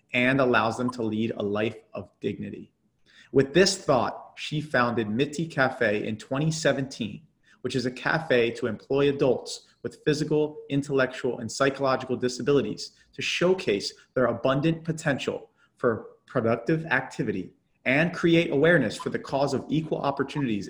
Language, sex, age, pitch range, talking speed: English, male, 30-49, 115-150 Hz, 140 wpm